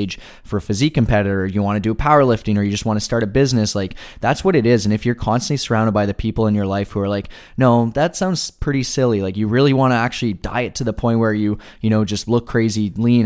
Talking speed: 265 wpm